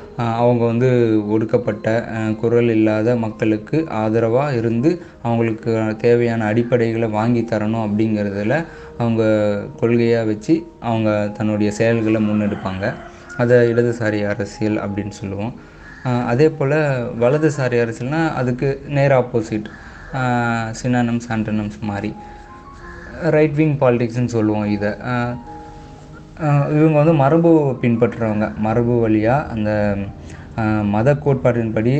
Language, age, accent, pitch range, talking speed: Tamil, 20-39, native, 105-125 Hz, 95 wpm